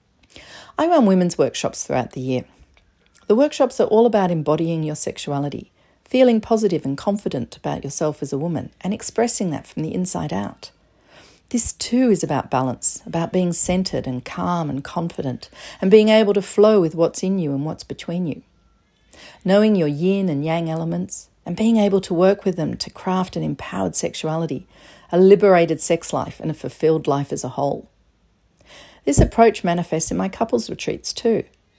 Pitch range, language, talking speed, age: 160-210 Hz, English, 175 wpm, 40-59